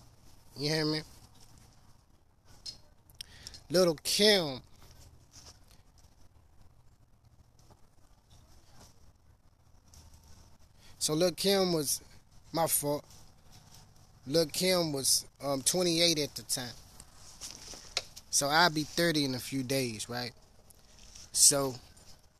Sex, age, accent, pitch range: male, 20-39, American, 95-145 Hz